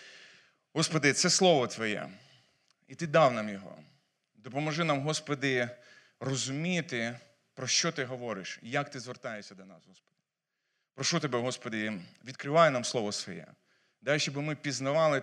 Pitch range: 125-160 Hz